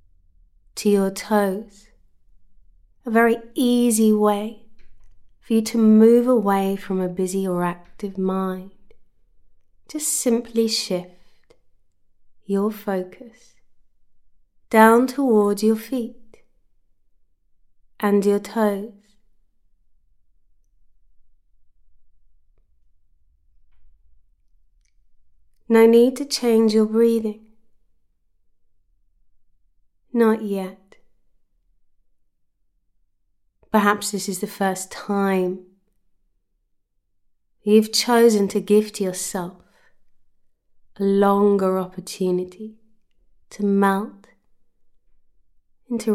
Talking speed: 70 wpm